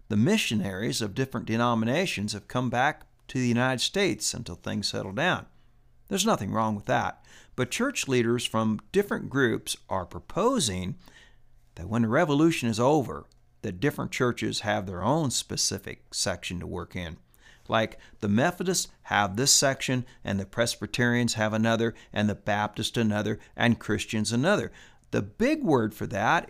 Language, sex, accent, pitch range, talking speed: English, male, American, 105-130 Hz, 155 wpm